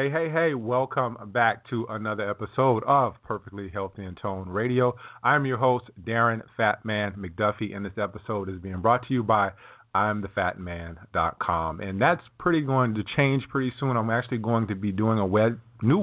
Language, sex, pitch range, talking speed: English, male, 105-125 Hz, 170 wpm